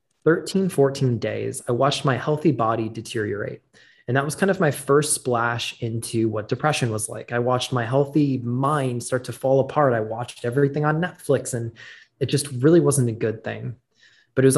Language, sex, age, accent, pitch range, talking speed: English, male, 20-39, American, 115-140 Hz, 195 wpm